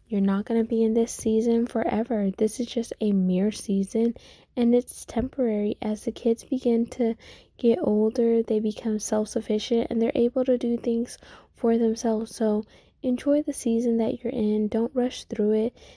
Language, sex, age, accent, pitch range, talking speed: English, female, 10-29, American, 205-235 Hz, 175 wpm